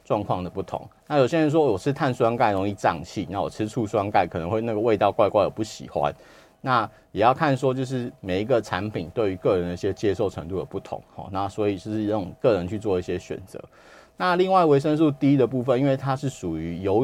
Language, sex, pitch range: Chinese, male, 100-145 Hz